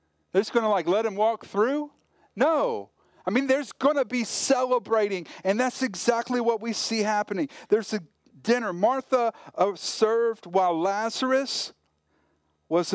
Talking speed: 150 wpm